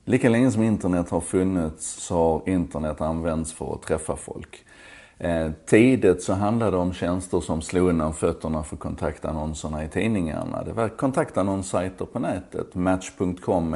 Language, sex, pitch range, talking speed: Swedish, male, 80-100 Hz, 155 wpm